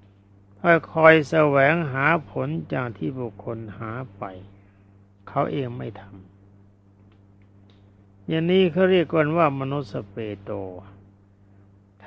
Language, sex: Thai, male